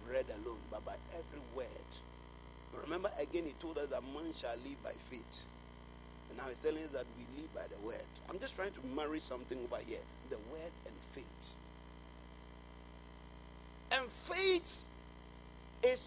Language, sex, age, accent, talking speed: English, male, 50-69, Nigerian, 160 wpm